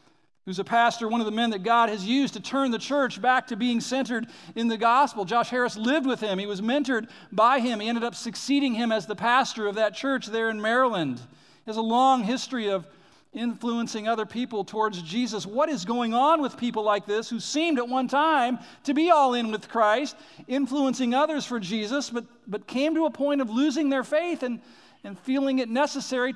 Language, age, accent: English, 50-69, American